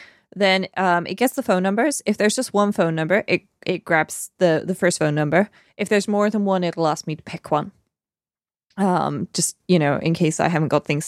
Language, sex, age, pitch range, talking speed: English, female, 20-39, 165-205 Hz, 230 wpm